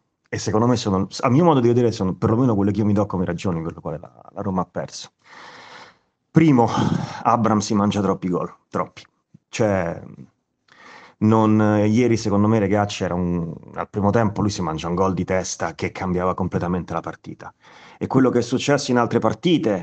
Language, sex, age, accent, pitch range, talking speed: Italian, male, 30-49, native, 95-120 Hz, 190 wpm